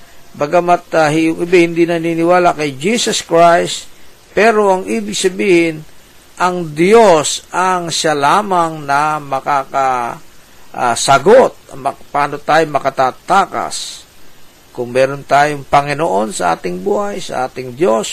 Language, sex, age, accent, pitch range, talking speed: Filipino, male, 50-69, native, 135-175 Hz, 105 wpm